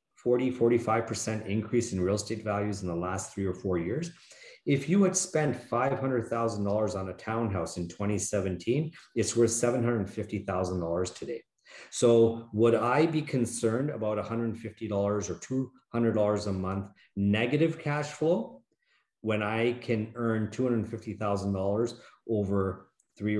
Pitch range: 100-135 Hz